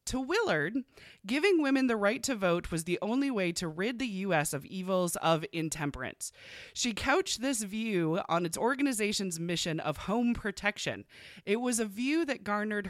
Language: English